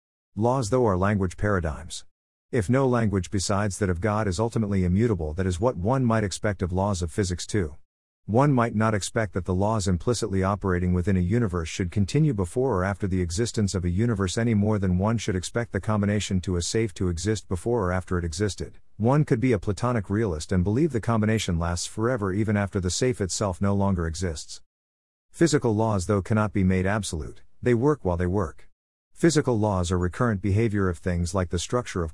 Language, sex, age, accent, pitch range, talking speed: English, male, 50-69, American, 90-110 Hz, 205 wpm